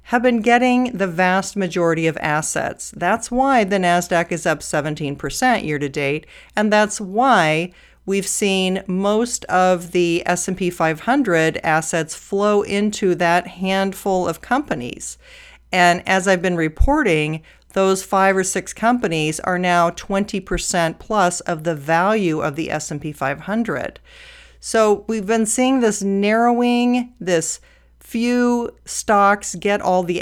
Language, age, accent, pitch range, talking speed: English, 40-59, American, 165-220 Hz, 130 wpm